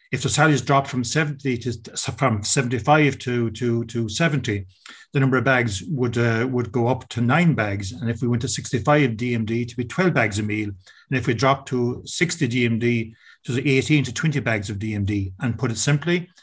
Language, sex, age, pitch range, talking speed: English, male, 40-59, 115-135 Hz, 210 wpm